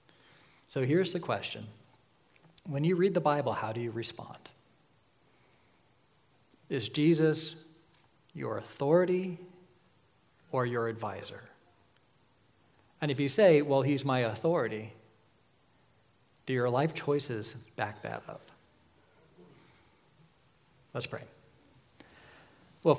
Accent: American